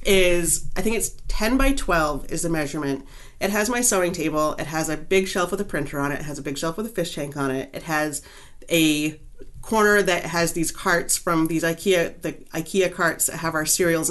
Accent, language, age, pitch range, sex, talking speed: American, English, 40-59, 145-185 Hz, female, 230 wpm